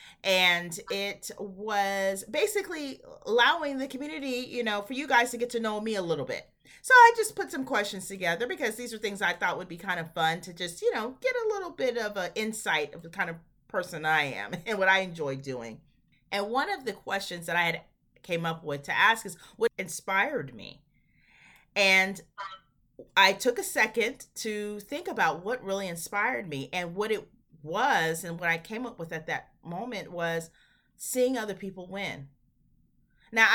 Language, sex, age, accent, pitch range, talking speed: English, female, 30-49, American, 170-245 Hz, 195 wpm